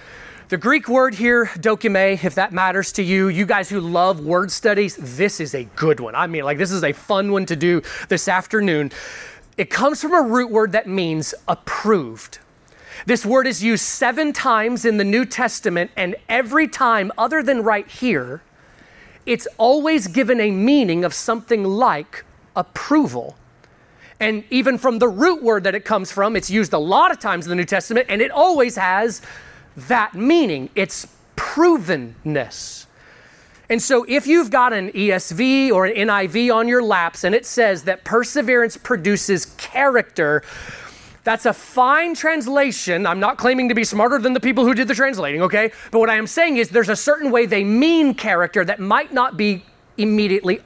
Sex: male